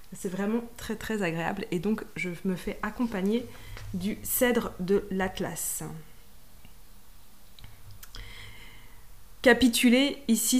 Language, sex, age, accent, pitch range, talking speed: French, female, 20-39, French, 185-235 Hz, 95 wpm